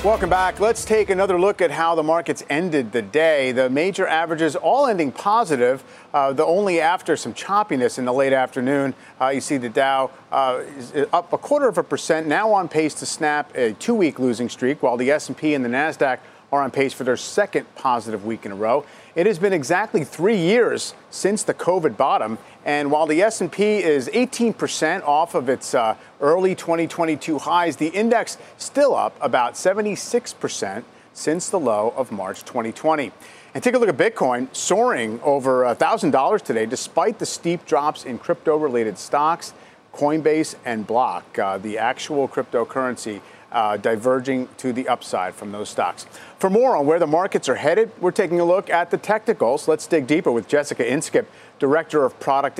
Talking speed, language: 185 wpm, English